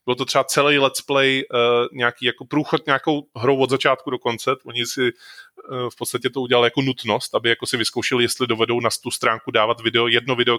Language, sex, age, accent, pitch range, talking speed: Czech, male, 20-39, native, 115-135 Hz, 215 wpm